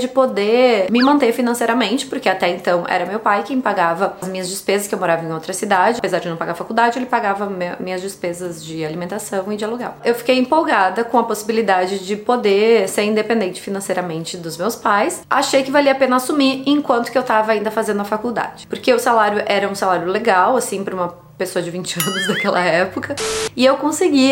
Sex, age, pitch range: female, 20-39, 195-255 Hz